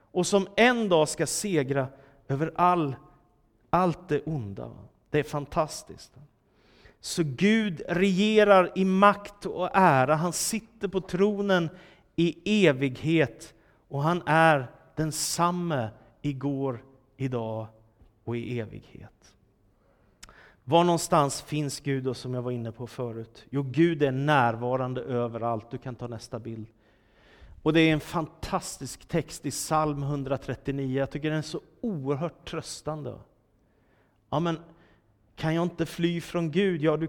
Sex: male